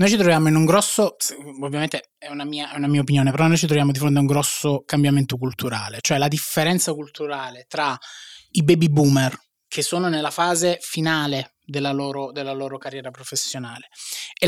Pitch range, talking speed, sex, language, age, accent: 140-185 Hz, 180 wpm, male, Italian, 20-39, native